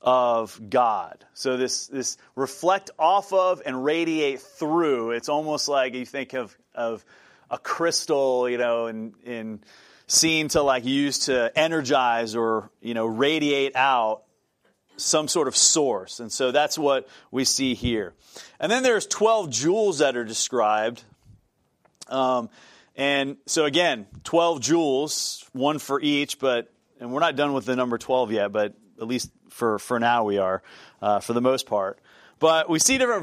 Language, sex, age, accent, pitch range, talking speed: English, male, 30-49, American, 120-155 Hz, 165 wpm